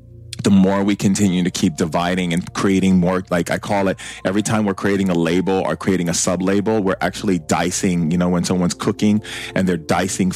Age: 30-49